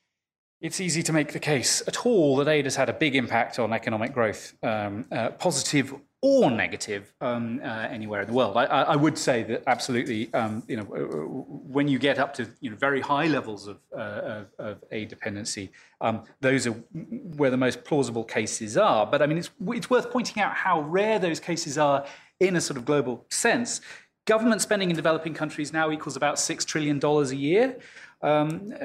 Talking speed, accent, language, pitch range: 190 wpm, British, English, 125-170 Hz